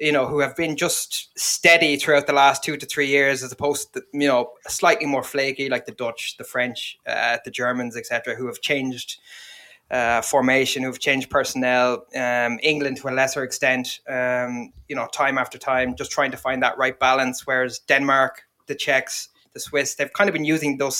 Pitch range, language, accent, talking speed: 125-140 Hz, English, Irish, 205 wpm